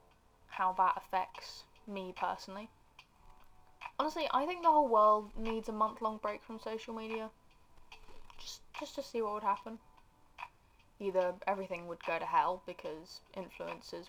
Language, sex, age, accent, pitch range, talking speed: English, female, 10-29, British, 185-310 Hz, 145 wpm